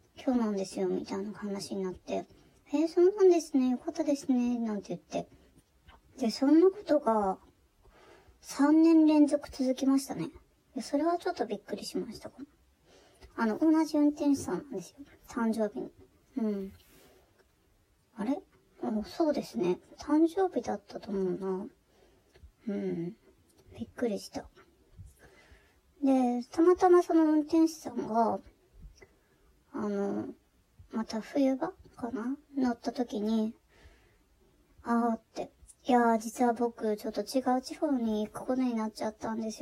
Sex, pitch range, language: male, 220-285 Hz, Japanese